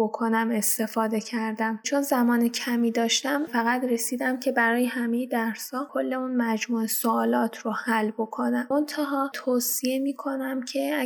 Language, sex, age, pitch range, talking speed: Persian, female, 10-29, 240-265 Hz, 135 wpm